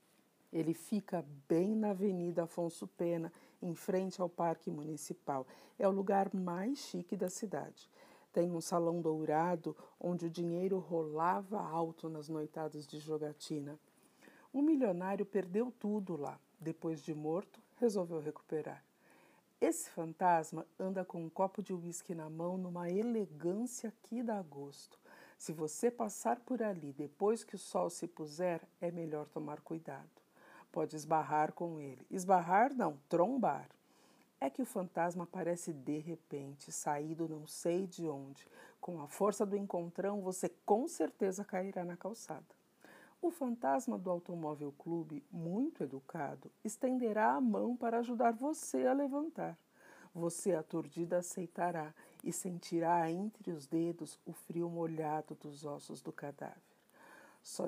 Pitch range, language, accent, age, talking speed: 160-200 Hz, Portuguese, Brazilian, 50-69, 140 wpm